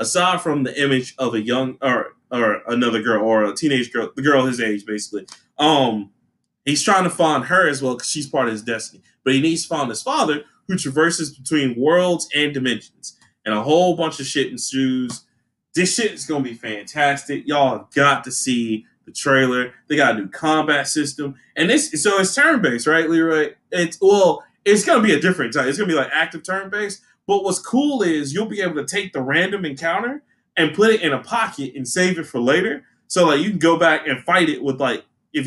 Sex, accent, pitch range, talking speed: male, American, 130-190 Hz, 225 wpm